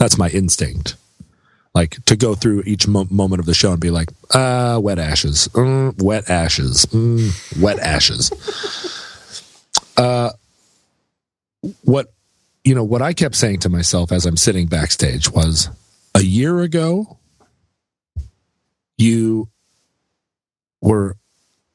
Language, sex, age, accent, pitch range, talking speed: English, male, 40-59, American, 100-135 Hz, 120 wpm